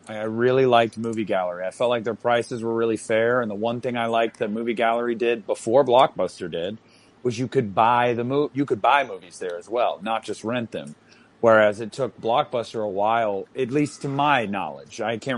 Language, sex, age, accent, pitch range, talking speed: English, male, 30-49, American, 105-125 Hz, 220 wpm